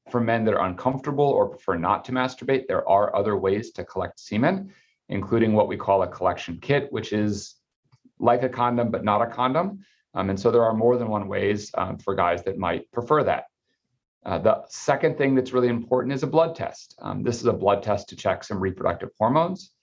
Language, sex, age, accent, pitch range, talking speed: English, male, 40-59, American, 100-130 Hz, 215 wpm